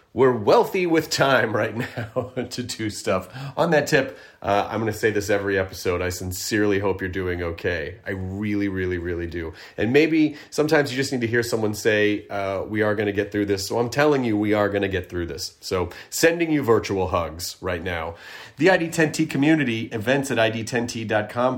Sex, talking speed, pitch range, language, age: male, 205 wpm, 100-135 Hz, English, 30-49